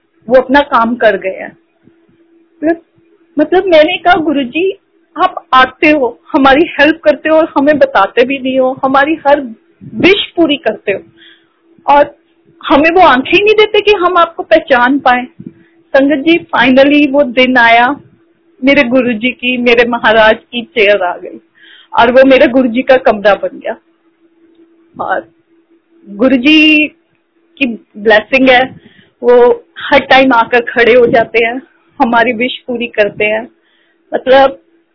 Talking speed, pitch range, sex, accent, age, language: 140 wpm, 245-325 Hz, female, native, 30-49, Hindi